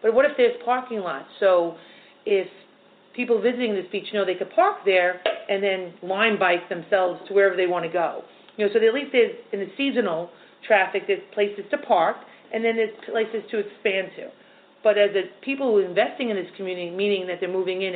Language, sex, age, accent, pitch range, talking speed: English, female, 40-59, American, 185-230 Hz, 215 wpm